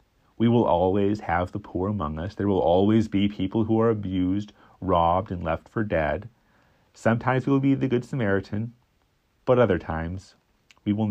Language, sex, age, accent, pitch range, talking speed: English, male, 40-59, American, 80-110 Hz, 180 wpm